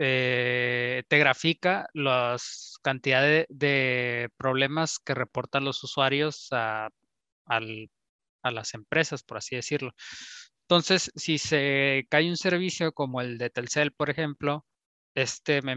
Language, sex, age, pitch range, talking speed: Spanish, male, 20-39, 125-155 Hz, 120 wpm